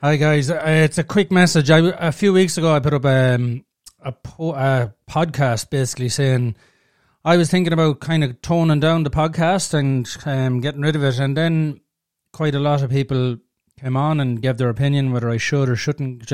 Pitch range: 130-160 Hz